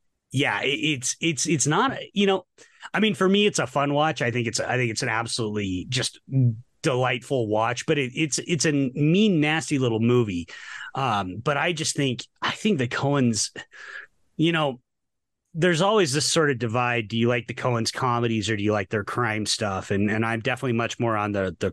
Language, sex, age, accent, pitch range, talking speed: English, male, 30-49, American, 115-150 Hz, 205 wpm